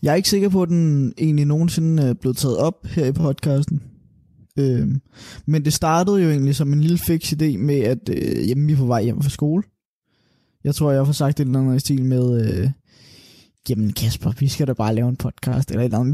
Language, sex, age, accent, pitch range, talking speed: Danish, male, 20-39, native, 125-155 Hz, 230 wpm